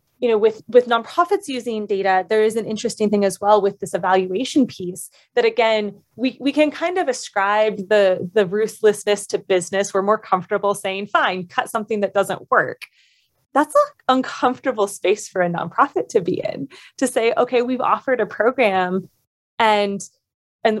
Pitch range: 195-255 Hz